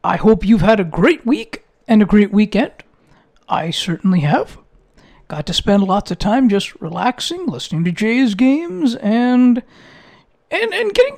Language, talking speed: English, 160 wpm